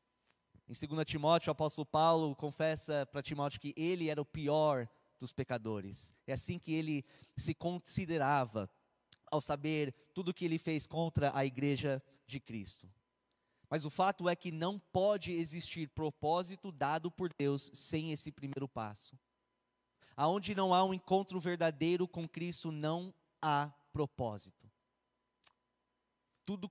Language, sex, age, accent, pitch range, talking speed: Portuguese, male, 20-39, Brazilian, 145-180 Hz, 140 wpm